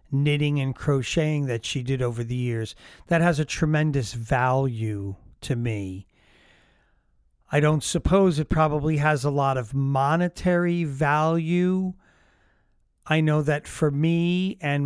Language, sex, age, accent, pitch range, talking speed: English, male, 40-59, American, 130-160 Hz, 135 wpm